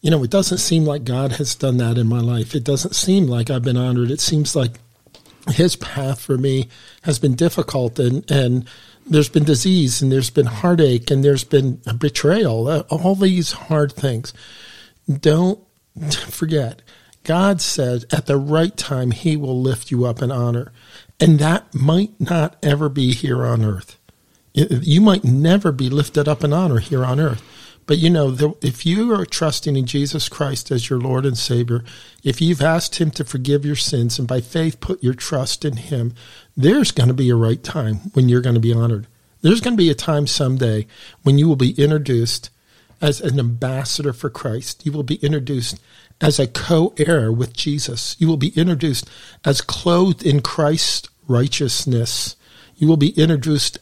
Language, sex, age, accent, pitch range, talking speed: English, male, 50-69, American, 125-155 Hz, 185 wpm